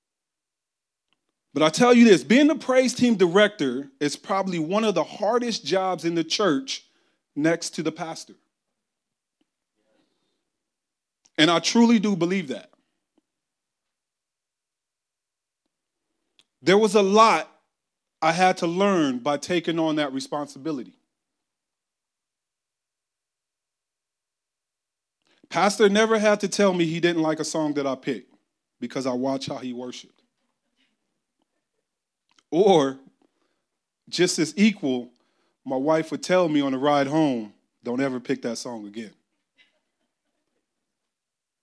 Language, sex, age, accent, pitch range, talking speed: English, male, 30-49, American, 155-220 Hz, 120 wpm